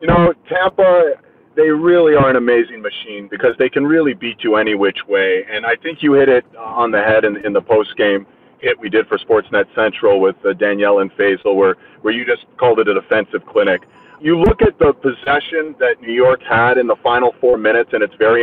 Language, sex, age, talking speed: English, male, 30-49, 220 wpm